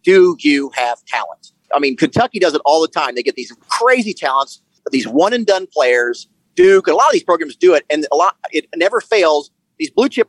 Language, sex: English, male